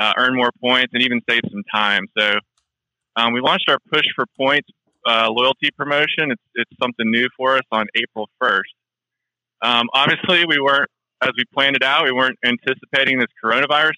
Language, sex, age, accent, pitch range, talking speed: English, male, 20-39, American, 110-130 Hz, 185 wpm